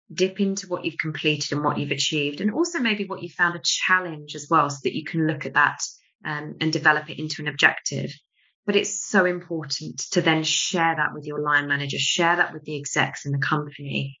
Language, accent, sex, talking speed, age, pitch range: English, British, female, 225 wpm, 20-39, 145-170 Hz